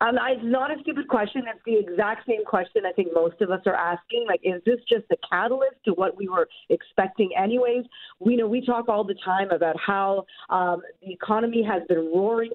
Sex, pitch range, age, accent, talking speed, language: female, 185-235 Hz, 40-59, American, 215 wpm, English